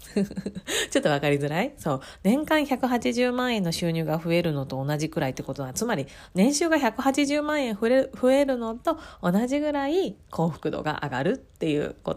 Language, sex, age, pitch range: Japanese, female, 30-49, 145-230 Hz